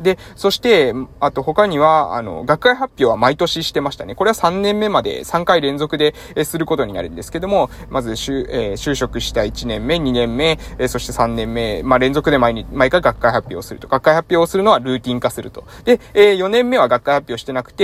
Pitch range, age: 125-185 Hz, 20-39